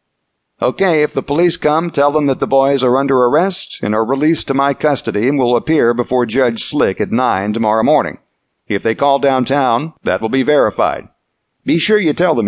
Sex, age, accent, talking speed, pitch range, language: male, 60-79, American, 200 wpm, 110-140 Hz, English